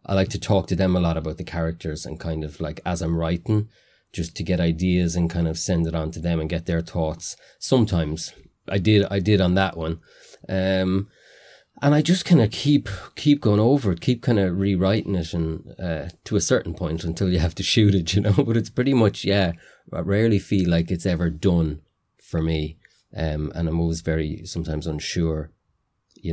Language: English